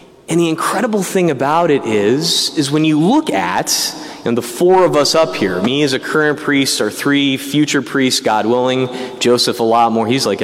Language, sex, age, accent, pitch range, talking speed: English, male, 30-49, American, 145-205 Hz, 205 wpm